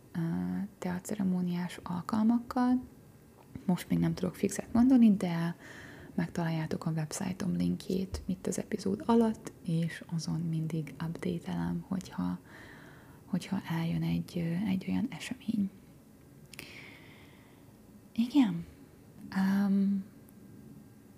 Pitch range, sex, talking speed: 170-195 Hz, female, 85 wpm